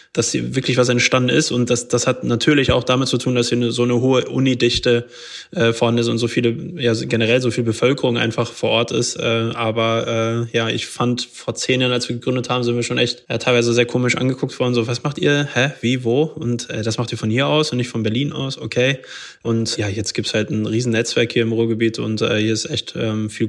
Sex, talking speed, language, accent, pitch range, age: male, 250 wpm, German, German, 115-125 Hz, 20-39